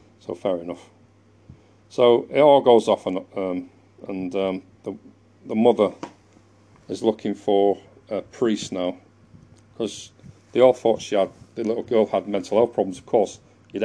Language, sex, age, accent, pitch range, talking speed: English, male, 40-59, British, 100-110 Hz, 160 wpm